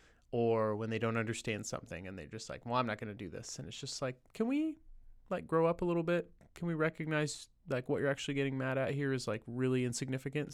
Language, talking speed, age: English, 250 wpm, 20-39